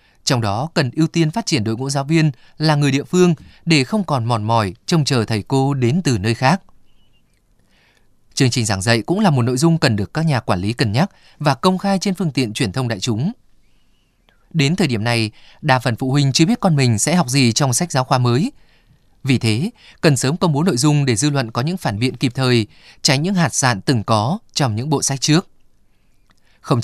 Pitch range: 115-155 Hz